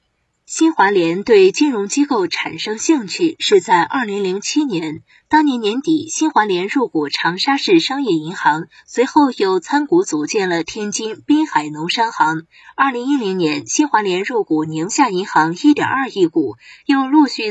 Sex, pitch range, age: female, 195-310 Hz, 20-39